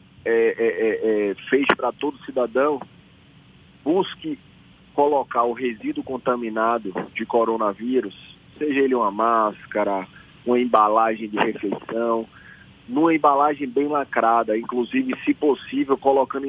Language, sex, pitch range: Portuguese, male, 120-150 Hz